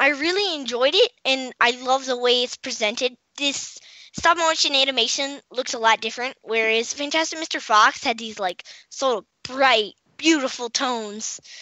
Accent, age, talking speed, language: American, 10-29, 155 wpm, English